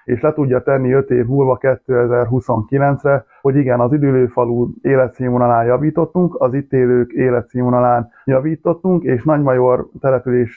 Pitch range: 125-140 Hz